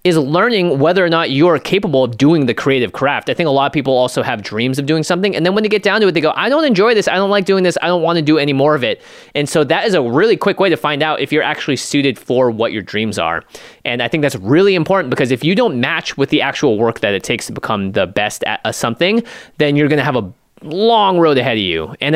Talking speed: 295 wpm